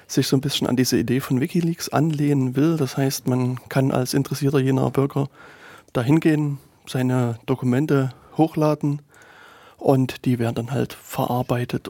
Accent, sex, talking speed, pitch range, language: German, male, 145 wpm, 120-140 Hz, German